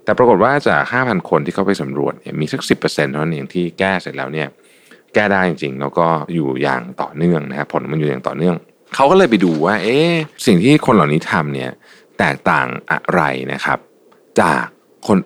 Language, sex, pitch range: Thai, male, 75-115 Hz